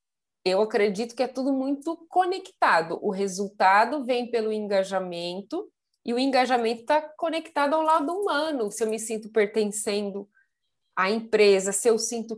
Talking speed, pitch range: 145 wpm, 200-245 Hz